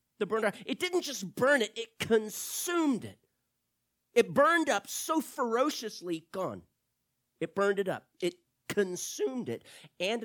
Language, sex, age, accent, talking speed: English, male, 40-59, American, 130 wpm